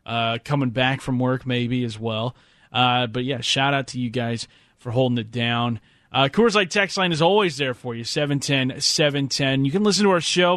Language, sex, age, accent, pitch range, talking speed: English, male, 30-49, American, 125-170 Hz, 205 wpm